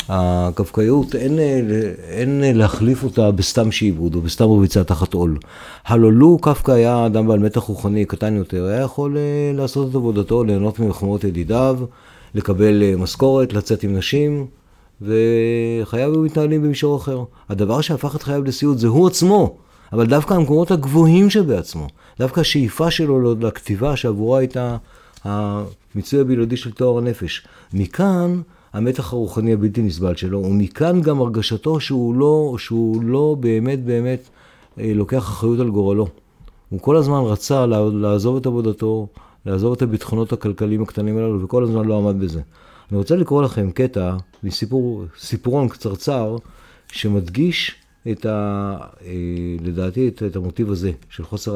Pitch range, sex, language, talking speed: 100-130 Hz, male, Hebrew, 135 wpm